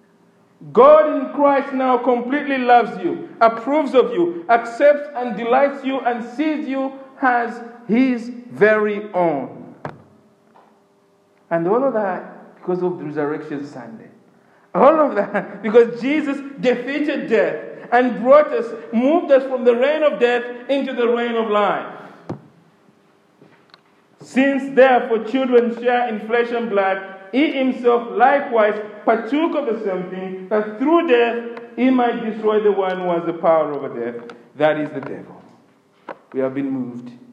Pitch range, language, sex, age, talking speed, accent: 175-255 Hz, English, male, 50-69, 145 wpm, Nigerian